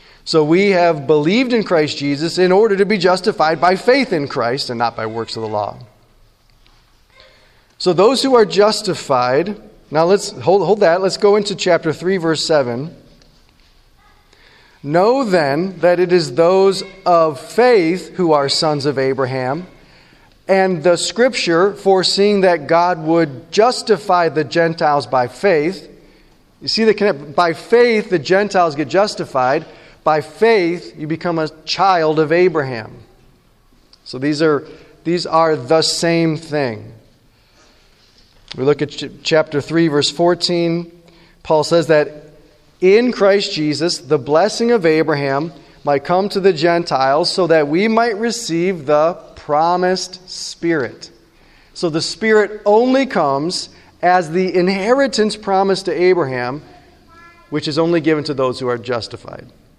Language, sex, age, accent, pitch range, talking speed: English, male, 40-59, American, 145-185 Hz, 140 wpm